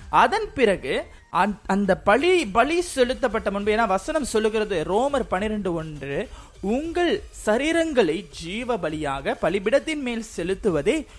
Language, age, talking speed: Tamil, 20-39, 100 wpm